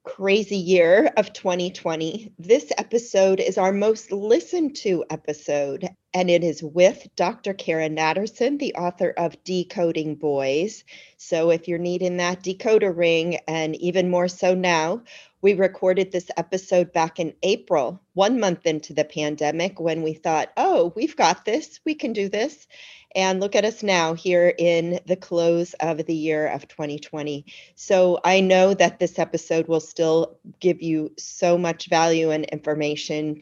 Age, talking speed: 40-59, 160 wpm